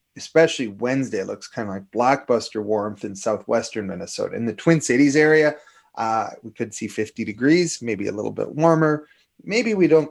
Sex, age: male, 30-49